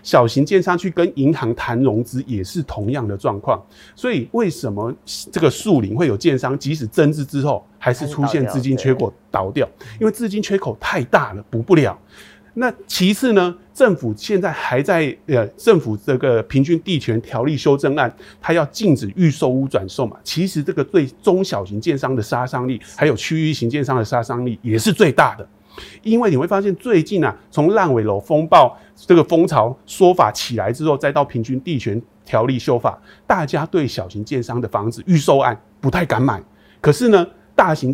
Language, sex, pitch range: Chinese, male, 120-170 Hz